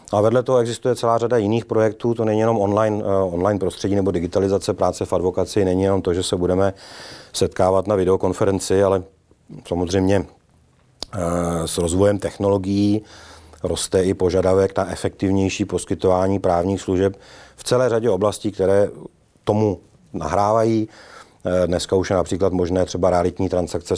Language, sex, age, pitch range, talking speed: Czech, male, 30-49, 90-95 Hz, 145 wpm